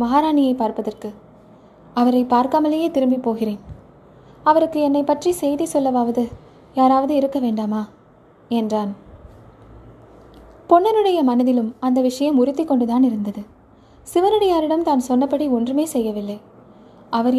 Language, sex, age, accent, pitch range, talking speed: Tamil, female, 20-39, native, 230-290 Hz, 90 wpm